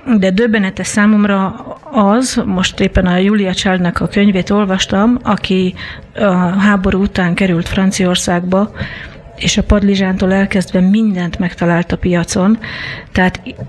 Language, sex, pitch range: Hungarian, female, 180-210 Hz